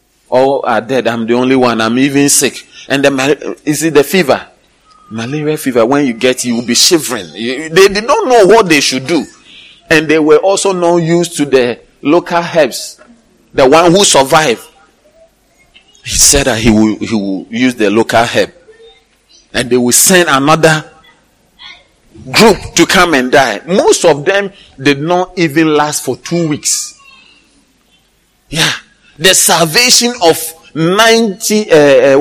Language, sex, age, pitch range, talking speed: English, male, 40-59, 135-195 Hz, 160 wpm